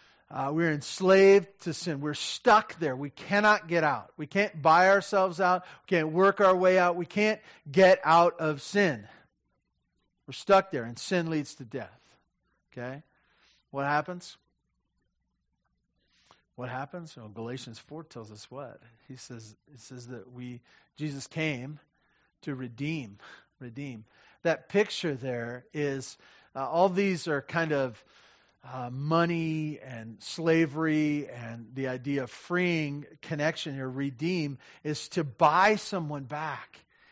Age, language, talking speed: 40-59, English, 140 wpm